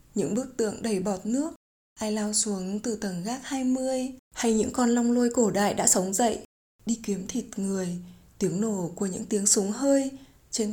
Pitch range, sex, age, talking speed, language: 195-240 Hz, female, 20-39, 195 wpm, Vietnamese